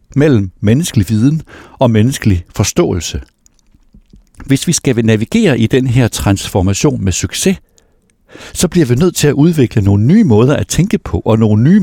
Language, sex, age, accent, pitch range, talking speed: Danish, male, 60-79, native, 100-155 Hz, 160 wpm